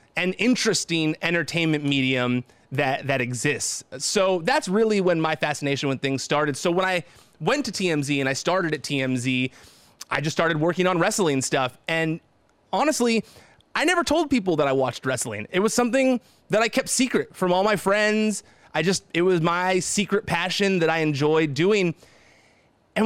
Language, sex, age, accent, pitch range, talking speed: English, male, 30-49, American, 140-195 Hz, 175 wpm